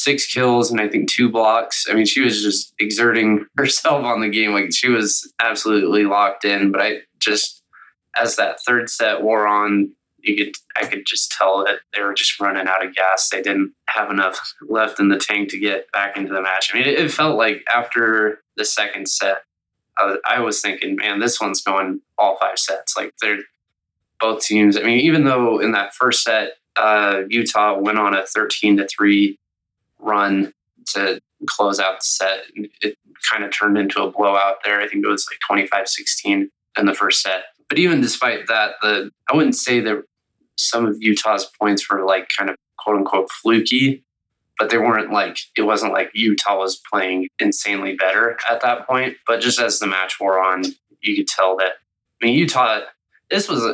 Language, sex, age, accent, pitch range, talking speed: English, male, 20-39, American, 100-115 Hz, 195 wpm